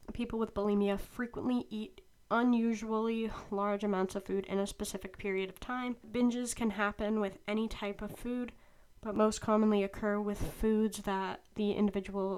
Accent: American